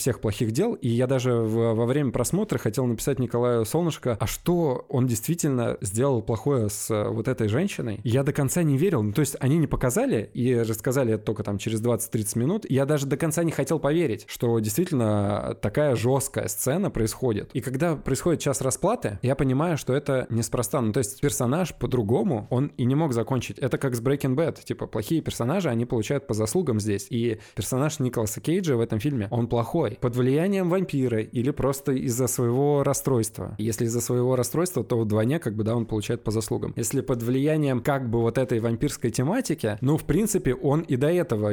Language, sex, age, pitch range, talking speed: Russian, male, 20-39, 110-140 Hz, 190 wpm